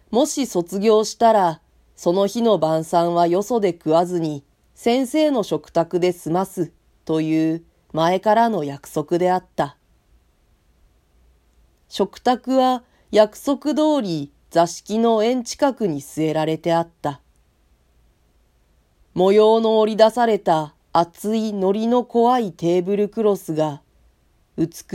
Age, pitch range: 40-59, 140-215 Hz